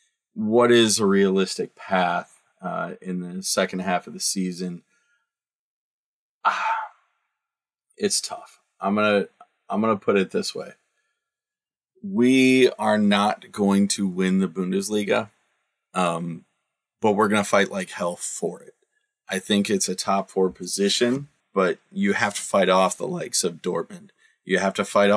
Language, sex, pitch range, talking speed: English, male, 95-130 Hz, 150 wpm